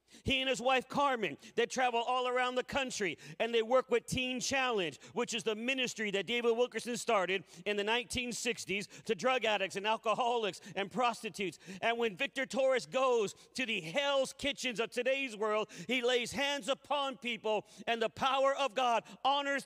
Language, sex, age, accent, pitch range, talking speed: English, male, 40-59, American, 225-275 Hz, 175 wpm